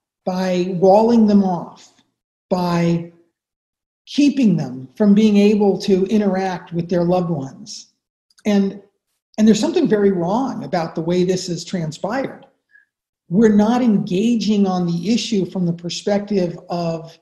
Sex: male